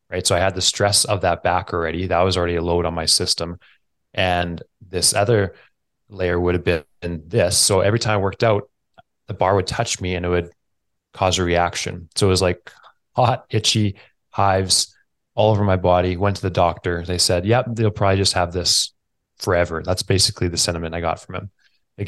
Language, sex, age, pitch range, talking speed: English, male, 20-39, 90-105 Hz, 205 wpm